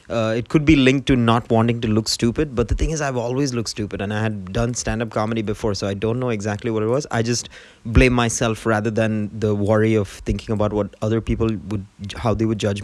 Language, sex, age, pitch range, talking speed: English, male, 20-39, 105-120 Hz, 250 wpm